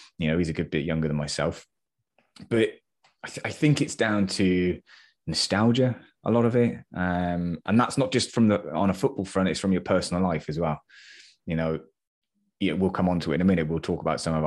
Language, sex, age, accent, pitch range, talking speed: English, male, 20-39, British, 85-100 Hz, 225 wpm